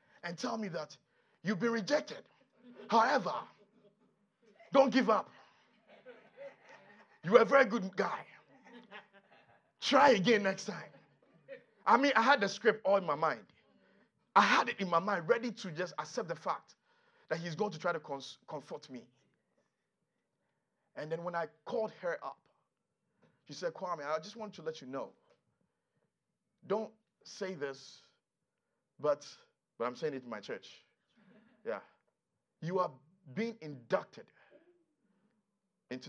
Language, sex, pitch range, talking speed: English, male, 185-240 Hz, 140 wpm